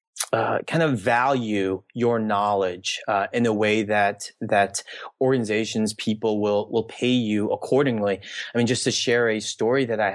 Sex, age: male, 30-49